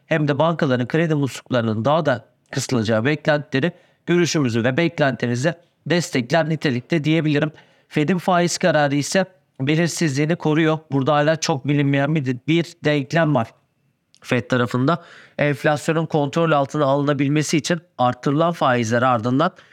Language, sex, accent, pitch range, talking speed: Turkish, male, native, 130-155 Hz, 115 wpm